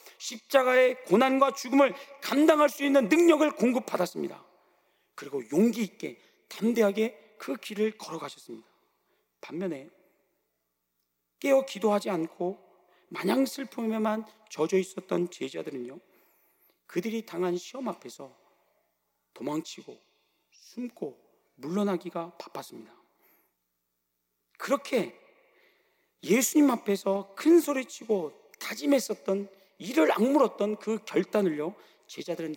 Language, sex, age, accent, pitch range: Korean, male, 40-59, native, 175-245 Hz